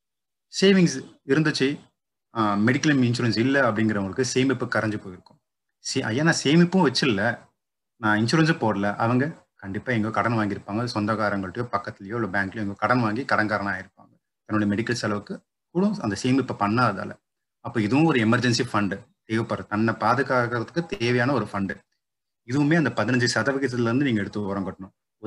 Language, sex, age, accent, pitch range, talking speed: Tamil, male, 30-49, native, 105-130 Hz, 140 wpm